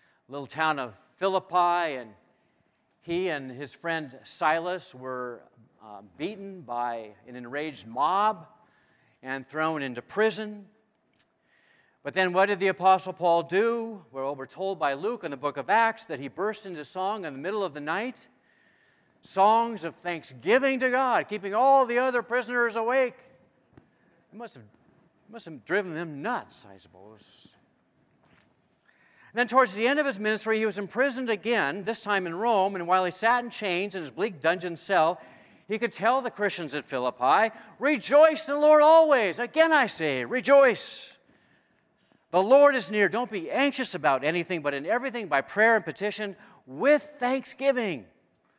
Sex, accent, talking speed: male, American, 165 wpm